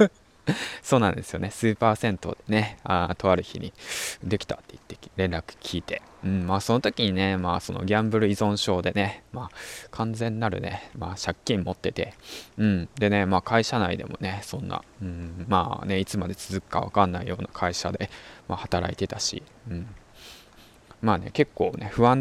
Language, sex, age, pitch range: Japanese, male, 20-39, 95-110 Hz